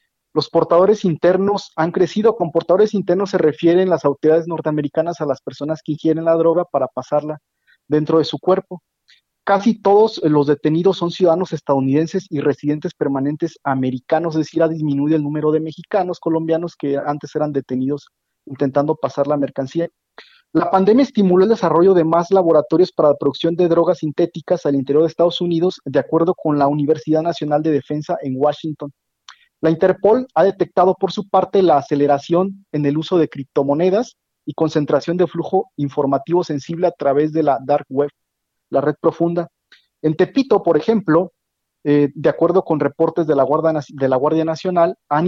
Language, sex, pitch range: Spanish, male, 145-175 Hz